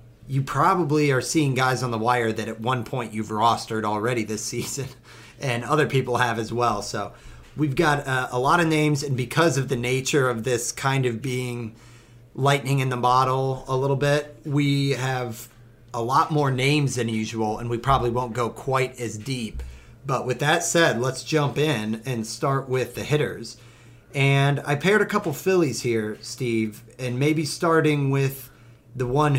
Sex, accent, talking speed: male, American, 185 wpm